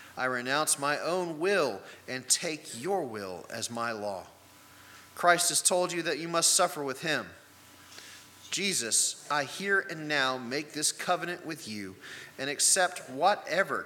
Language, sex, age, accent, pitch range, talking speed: English, male, 30-49, American, 115-160 Hz, 150 wpm